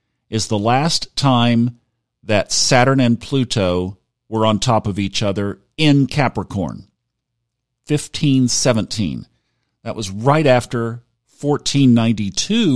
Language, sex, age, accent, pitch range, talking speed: English, male, 50-69, American, 100-135 Hz, 105 wpm